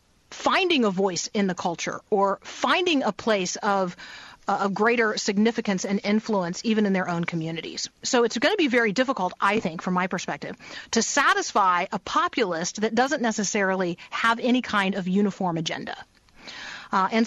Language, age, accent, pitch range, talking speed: English, 40-59, American, 200-255 Hz, 165 wpm